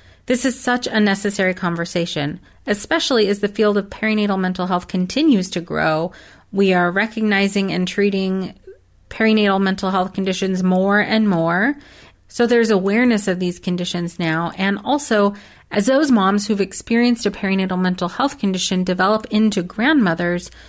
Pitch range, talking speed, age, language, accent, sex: 185-225 Hz, 150 wpm, 30-49, English, American, female